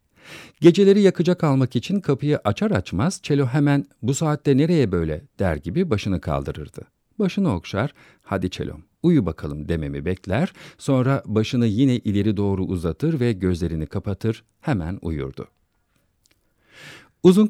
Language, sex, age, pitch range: Turkish, male, 50-69, 90-140 Hz